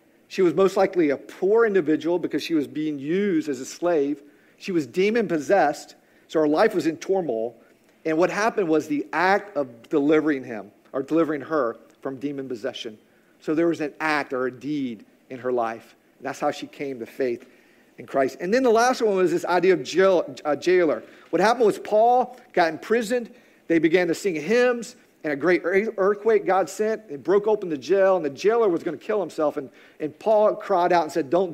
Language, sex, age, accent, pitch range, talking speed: English, male, 50-69, American, 150-210 Hz, 200 wpm